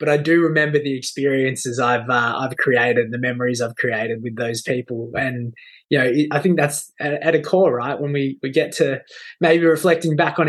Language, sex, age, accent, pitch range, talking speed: English, male, 20-39, Australian, 135-160 Hz, 210 wpm